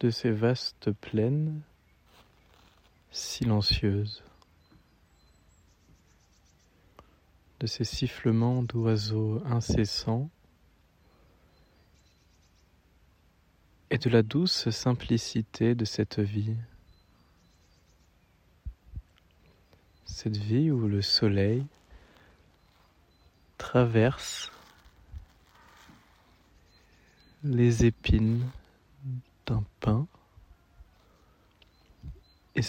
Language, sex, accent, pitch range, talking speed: French, male, French, 85-115 Hz, 55 wpm